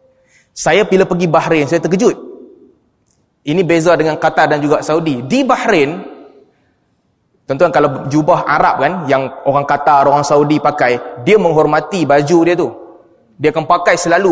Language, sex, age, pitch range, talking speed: Malay, male, 20-39, 160-205 Hz, 145 wpm